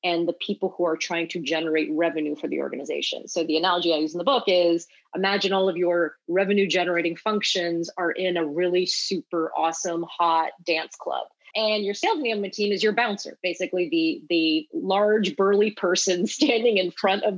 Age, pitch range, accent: 30-49, 170-205 Hz, American